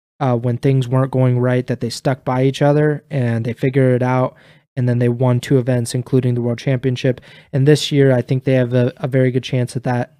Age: 20-39